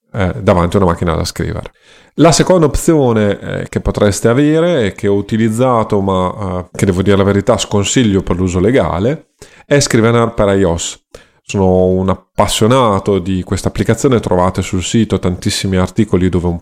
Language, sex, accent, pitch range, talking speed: Italian, male, native, 95-115 Hz, 165 wpm